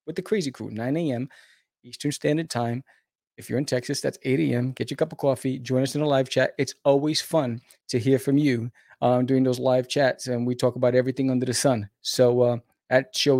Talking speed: 230 wpm